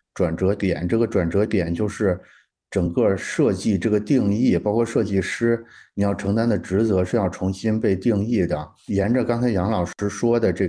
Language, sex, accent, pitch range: Chinese, male, native, 90-110 Hz